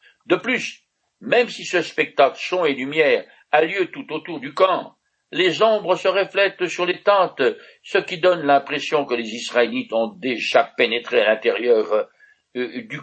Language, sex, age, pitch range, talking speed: French, male, 60-79, 135-205 Hz, 160 wpm